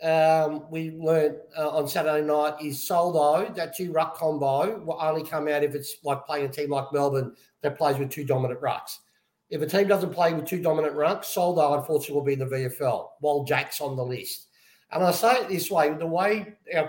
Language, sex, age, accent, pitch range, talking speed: English, male, 50-69, Australian, 150-185 Hz, 215 wpm